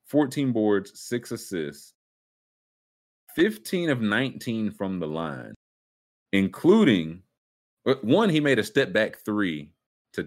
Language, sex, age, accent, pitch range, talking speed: English, male, 30-49, American, 85-120 Hz, 110 wpm